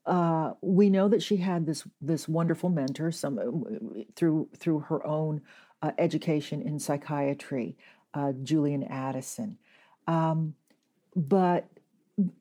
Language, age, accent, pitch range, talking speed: English, 50-69, American, 150-195 Hz, 115 wpm